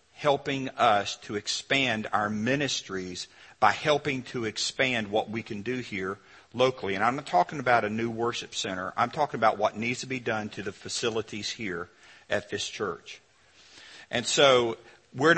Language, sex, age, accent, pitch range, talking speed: English, male, 50-69, American, 105-135 Hz, 170 wpm